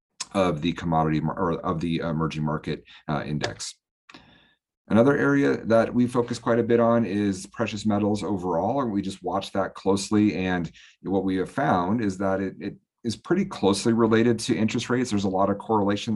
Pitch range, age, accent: 90-110 Hz, 40-59, American